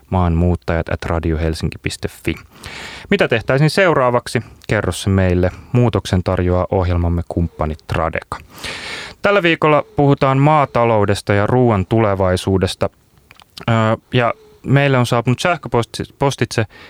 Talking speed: 85 wpm